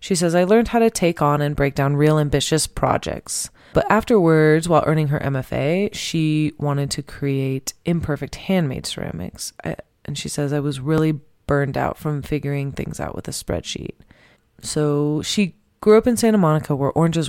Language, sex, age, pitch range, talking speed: English, female, 20-39, 145-180 Hz, 175 wpm